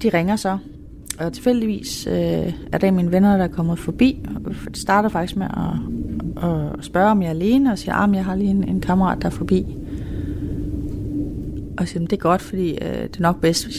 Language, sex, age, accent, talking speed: Danish, female, 30-49, native, 230 wpm